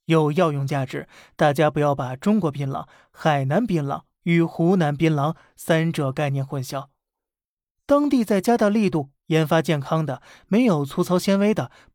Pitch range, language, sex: 145-180 Hz, Chinese, male